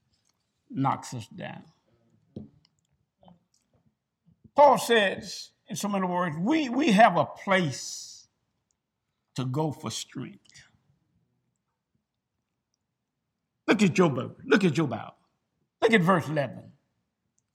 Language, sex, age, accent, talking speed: English, male, 60-79, American, 105 wpm